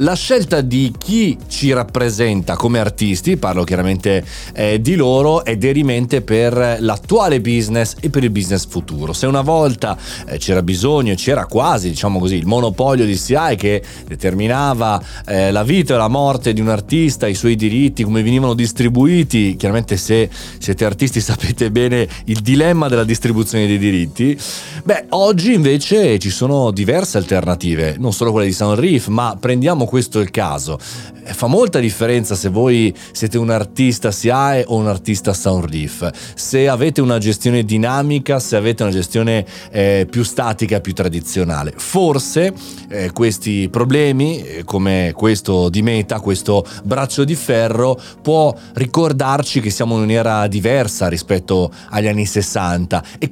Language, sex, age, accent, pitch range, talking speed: Italian, male, 30-49, native, 100-135 Hz, 155 wpm